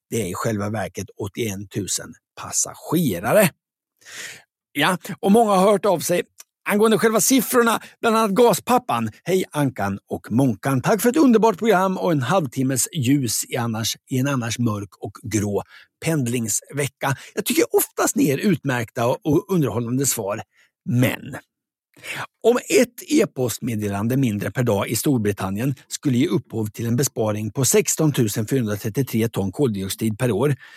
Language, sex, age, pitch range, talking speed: Swedish, male, 60-79, 115-180 Hz, 140 wpm